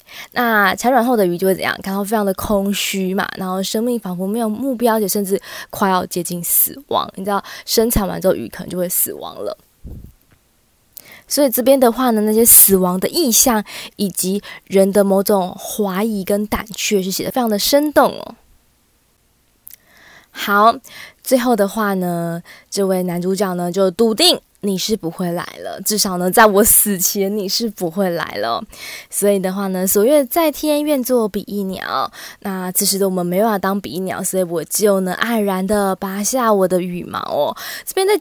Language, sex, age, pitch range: Chinese, female, 20-39, 190-230 Hz